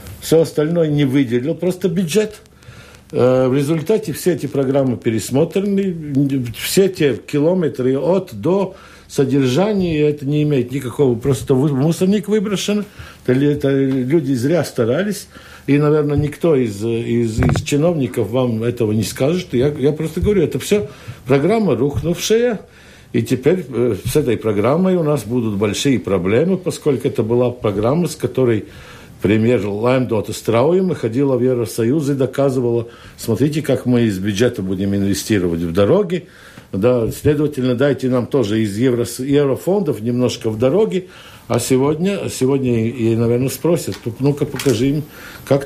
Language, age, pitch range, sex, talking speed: Russian, 60-79, 115-150 Hz, male, 135 wpm